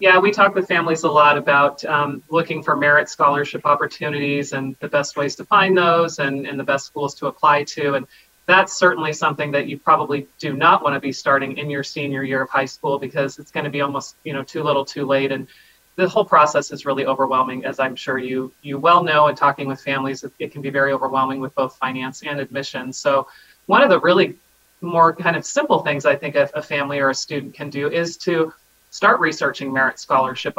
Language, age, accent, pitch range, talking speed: English, 30-49, American, 140-170 Hz, 230 wpm